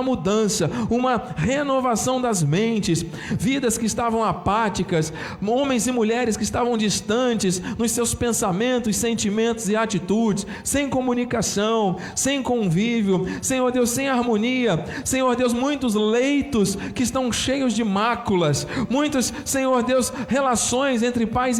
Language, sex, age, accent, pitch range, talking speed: Portuguese, male, 40-59, Brazilian, 215-250 Hz, 125 wpm